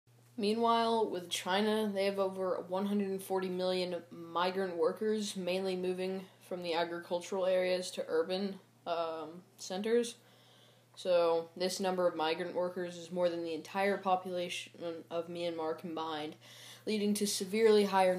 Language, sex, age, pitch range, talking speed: English, female, 10-29, 165-190 Hz, 130 wpm